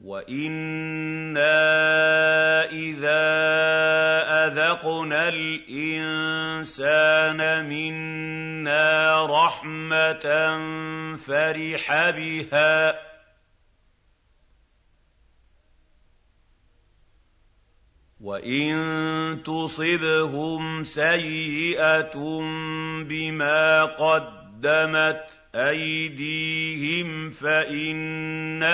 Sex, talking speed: male, 30 wpm